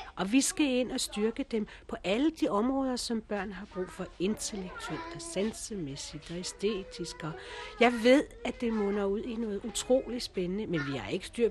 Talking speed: 190 wpm